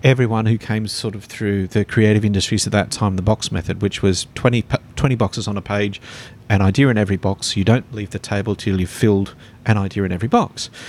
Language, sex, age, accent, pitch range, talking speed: English, male, 40-59, Australian, 105-130 Hz, 225 wpm